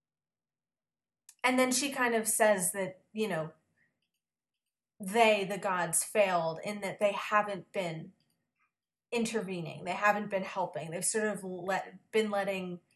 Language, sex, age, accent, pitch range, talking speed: English, female, 30-49, American, 180-215 Hz, 135 wpm